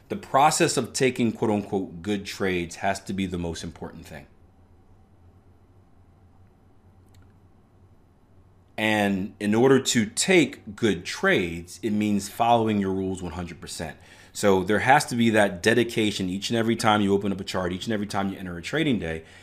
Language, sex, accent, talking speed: English, male, American, 165 wpm